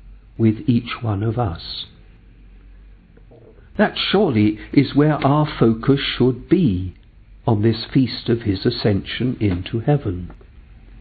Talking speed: 115 wpm